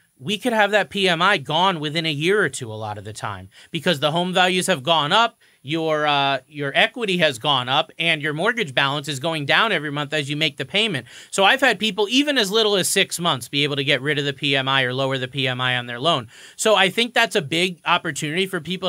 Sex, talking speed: male, 250 wpm